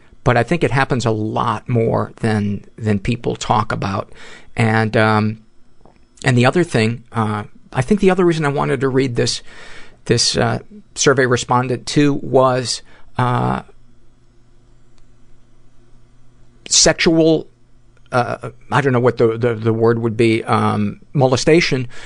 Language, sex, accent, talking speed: English, male, American, 140 wpm